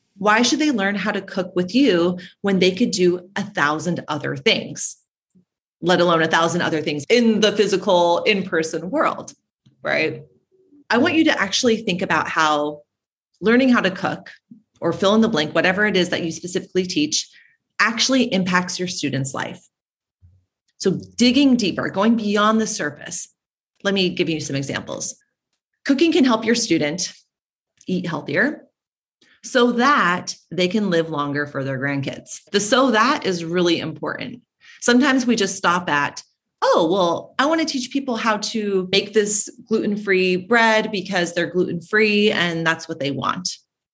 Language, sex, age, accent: English, female, 30-49, American